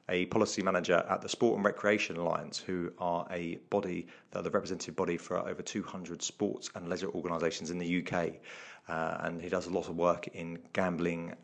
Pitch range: 90-105 Hz